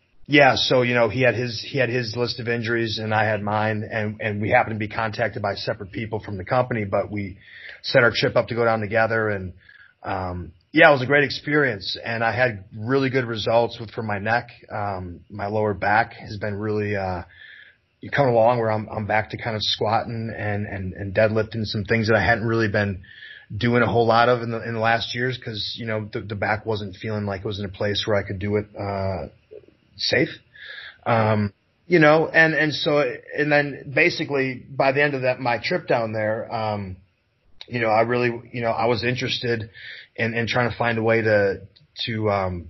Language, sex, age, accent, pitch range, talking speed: English, male, 30-49, American, 100-120 Hz, 220 wpm